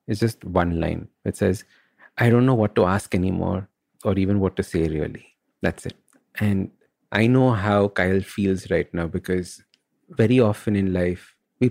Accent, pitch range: Indian, 95-115 Hz